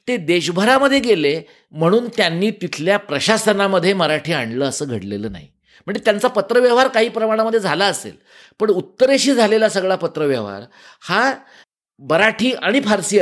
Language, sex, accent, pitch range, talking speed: Marathi, male, native, 145-210 Hz, 125 wpm